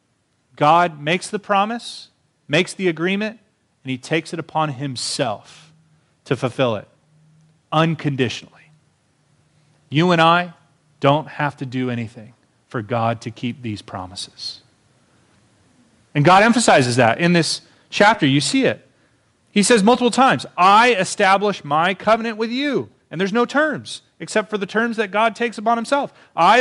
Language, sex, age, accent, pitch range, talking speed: English, male, 30-49, American, 145-215 Hz, 145 wpm